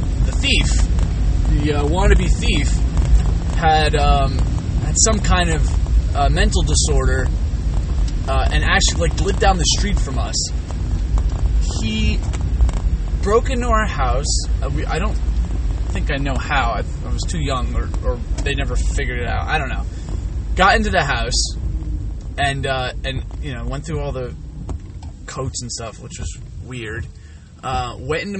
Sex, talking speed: male, 155 wpm